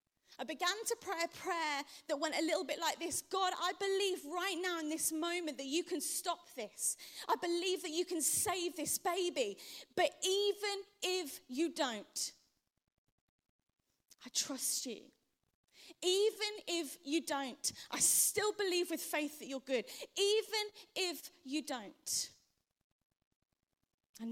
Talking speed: 145 wpm